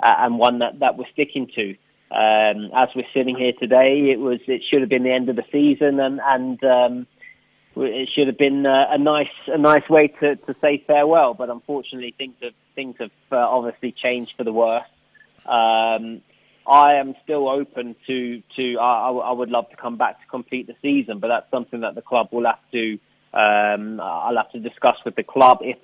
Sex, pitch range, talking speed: male, 120-135 Hz, 205 wpm